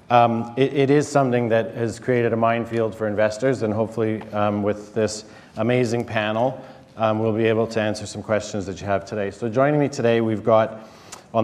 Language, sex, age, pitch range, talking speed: English, male, 40-59, 105-120 Hz, 200 wpm